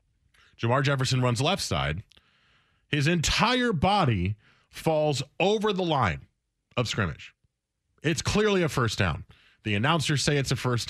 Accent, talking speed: American, 140 wpm